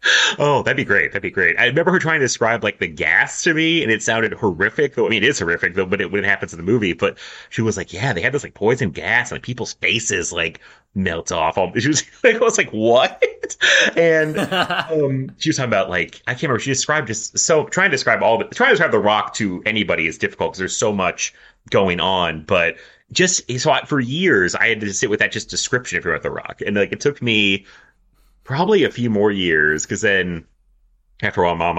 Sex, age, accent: male, 30-49, American